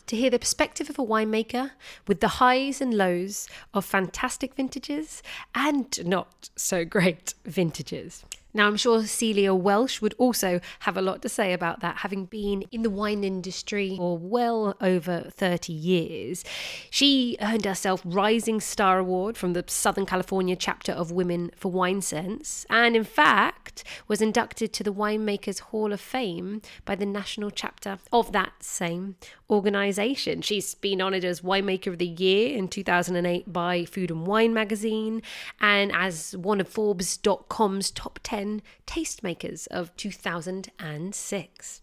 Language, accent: English, British